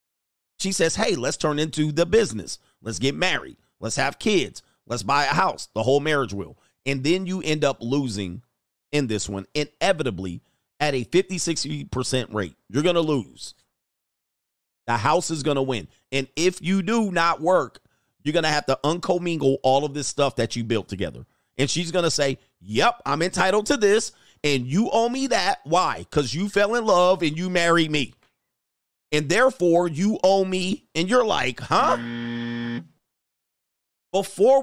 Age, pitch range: 40-59, 125-190 Hz